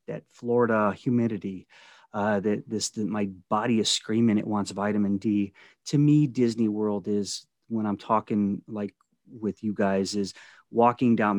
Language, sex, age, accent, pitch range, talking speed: English, male, 30-49, American, 105-145 Hz, 160 wpm